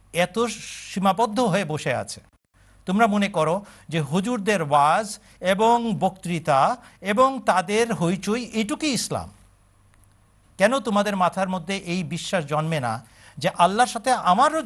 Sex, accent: male, native